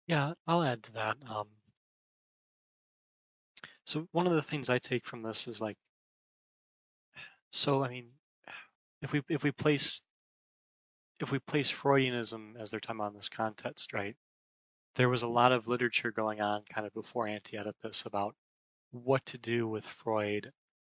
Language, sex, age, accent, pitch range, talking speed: English, male, 20-39, American, 105-130 Hz, 155 wpm